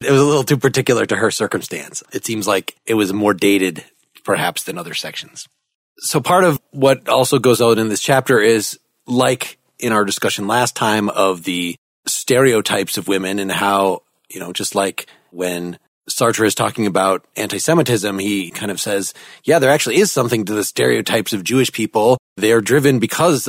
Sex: male